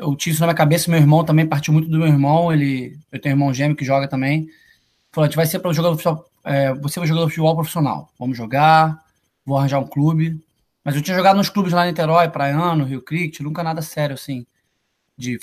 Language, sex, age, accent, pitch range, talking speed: Portuguese, male, 20-39, Brazilian, 145-165 Hz, 230 wpm